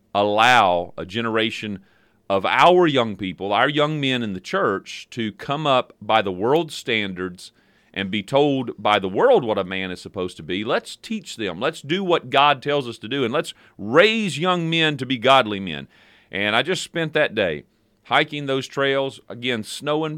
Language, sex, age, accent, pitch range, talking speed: English, male, 40-59, American, 105-140 Hz, 190 wpm